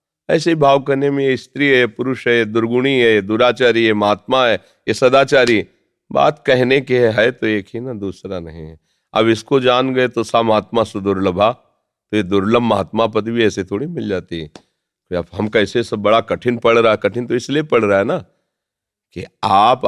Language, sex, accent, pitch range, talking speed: Hindi, male, native, 100-135 Hz, 195 wpm